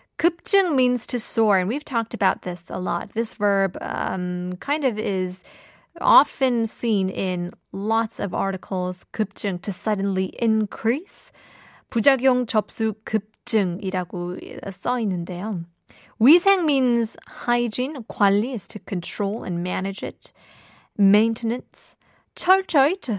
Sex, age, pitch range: female, 20-39, 190-245 Hz